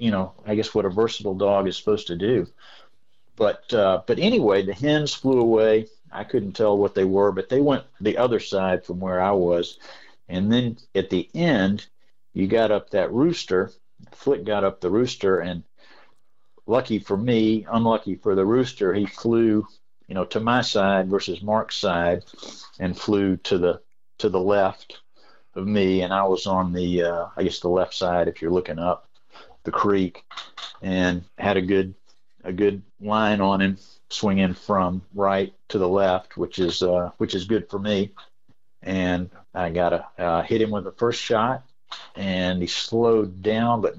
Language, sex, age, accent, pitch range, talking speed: English, male, 50-69, American, 90-110 Hz, 185 wpm